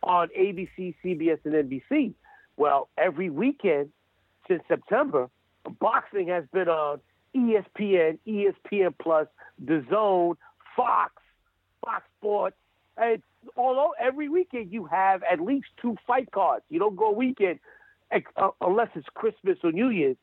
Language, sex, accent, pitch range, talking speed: English, male, American, 175-275 Hz, 130 wpm